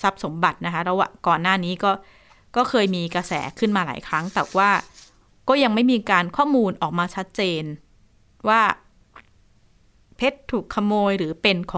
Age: 20-39